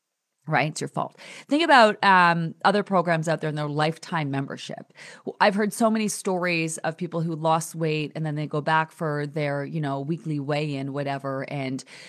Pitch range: 150-205 Hz